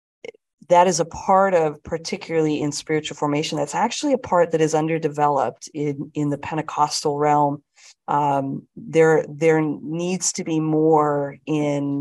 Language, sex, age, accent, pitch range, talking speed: English, female, 40-59, American, 150-175 Hz, 145 wpm